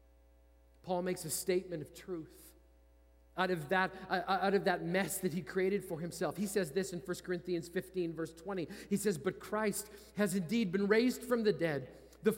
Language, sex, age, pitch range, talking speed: English, male, 40-59, 185-245 Hz, 195 wpm